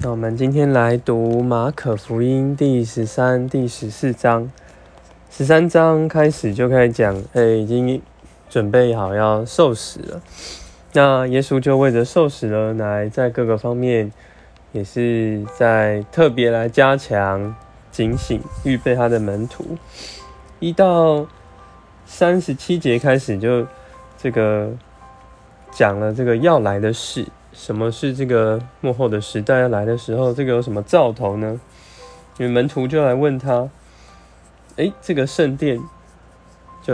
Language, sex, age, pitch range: Chinese, male, 20-39, 105-130 Hz